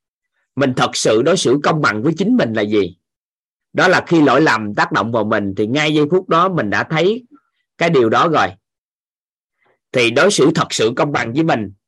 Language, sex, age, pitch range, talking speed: Vietnamese, male, 20-39, 120-175 Hz, 210 wpm